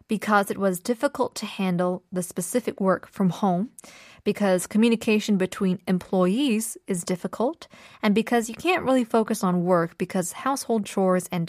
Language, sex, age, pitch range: Korean, female, 20-39, 195-270 Hz